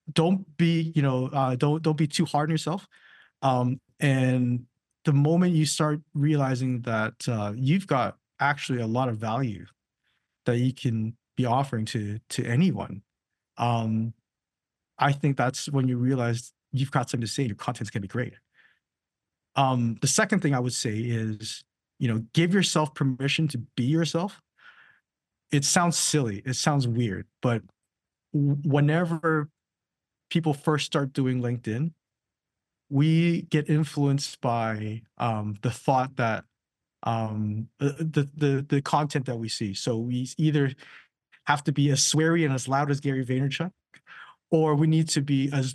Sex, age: male, 20-39